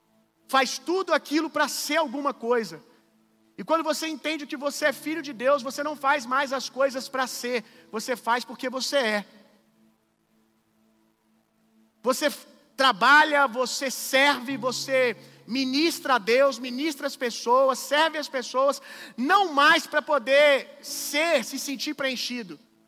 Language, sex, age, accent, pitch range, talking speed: Gujarati, male, 40-59, Brazilian, 245-305 Hz, 135 wpm